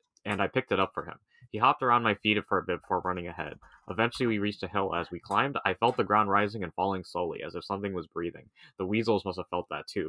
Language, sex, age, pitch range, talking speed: English, male, 20-39, 95-115 Hz, 275 wpm